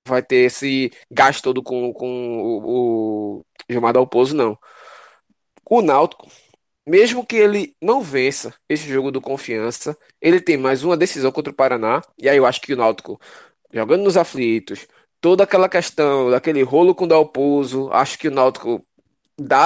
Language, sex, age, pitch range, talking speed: Portuguese, male, 20-39, 130-165 Hz, 170 wpm